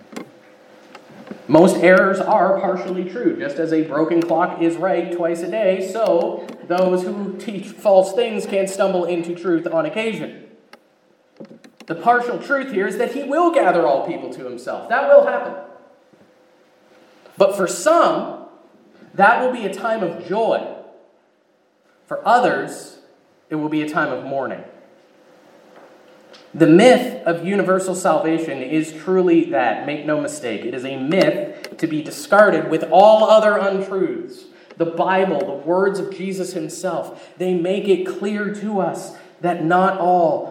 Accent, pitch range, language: American, 175-220 Hz, English